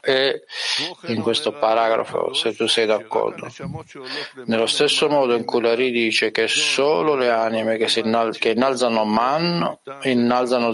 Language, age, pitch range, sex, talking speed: Italian, 50-69, 115-150 Hz, male, 140 wpm